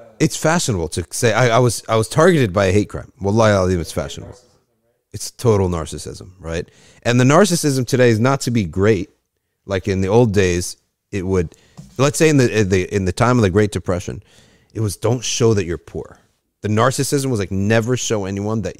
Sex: male